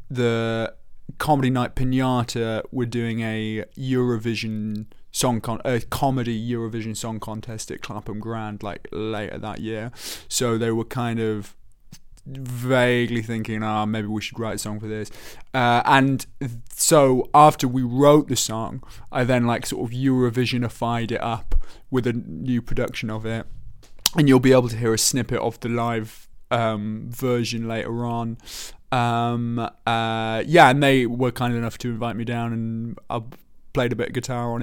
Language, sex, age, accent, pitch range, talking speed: English, male, 20-39, British, 115-130 Hz, 165 wpm